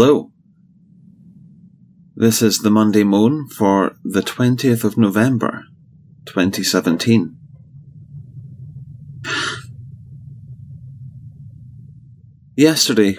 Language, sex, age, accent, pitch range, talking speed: English, male, 30-49, British, 95-140 Hz, 60 wpm